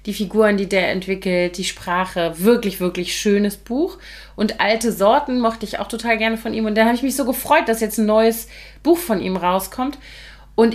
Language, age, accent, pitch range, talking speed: German, 30-49, German, 195-240 Hz, 205 wpm